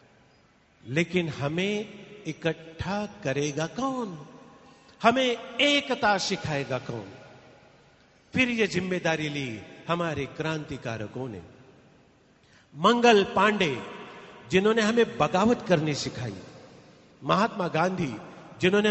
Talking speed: 85 wpm